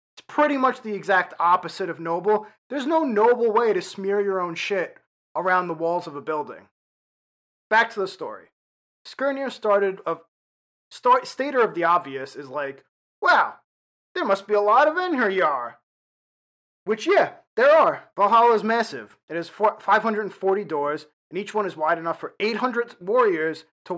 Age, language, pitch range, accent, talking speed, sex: 30-49, English, 170-215 Hz, American, 170 wpm, male